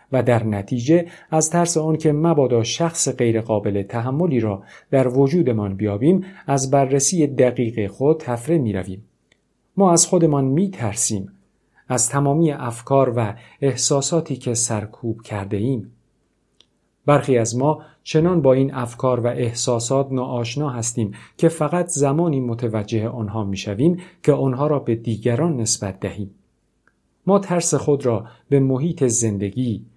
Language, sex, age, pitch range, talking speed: Persian, male, 50-69, 115-155 Hz, 130 wpm